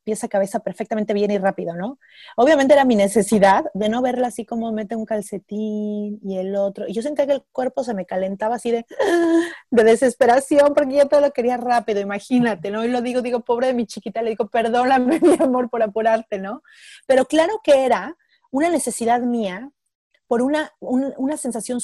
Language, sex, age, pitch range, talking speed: Spanish, female, 30-49, 210-265 Hz, 200 wpm